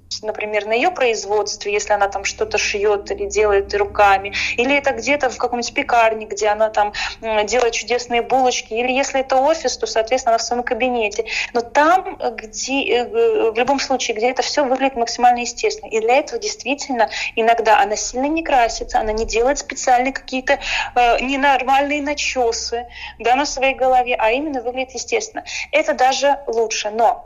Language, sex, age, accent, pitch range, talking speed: Russian, female, 20-39, native, 225-280 Hz, 165 wpm